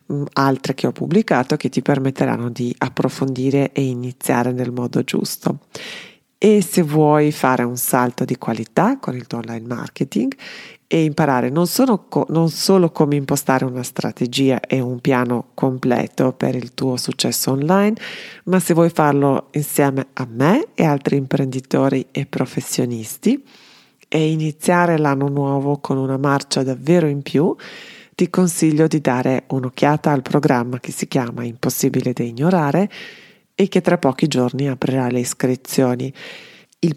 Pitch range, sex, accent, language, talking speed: 130-175 Hz, female, native, Italian, 145 wpm